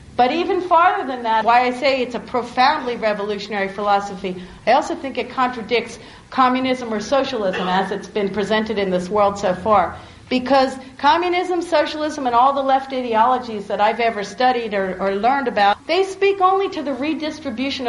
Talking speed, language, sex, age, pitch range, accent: 175 wpm, English, female, 50-69, 205-265 Hz, American